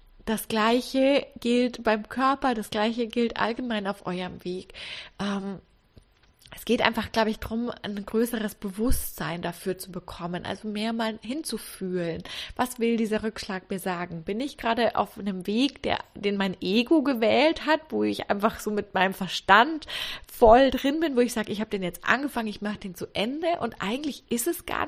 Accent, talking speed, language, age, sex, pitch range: German, 180 wpm, German, 20-39, female, 200-245 Hz